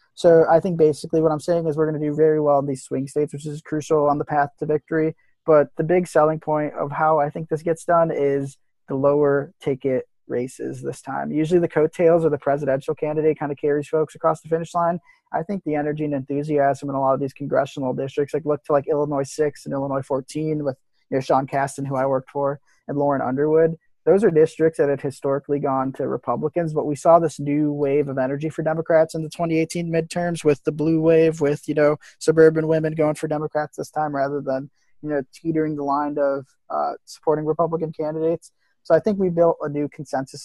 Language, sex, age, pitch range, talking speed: English, male, 20-39, 140-160 Hz, 220 wpm